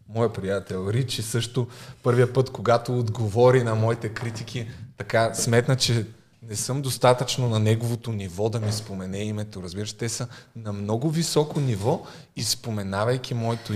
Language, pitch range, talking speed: Bulgarian, 105-135 Hz, 150 wpm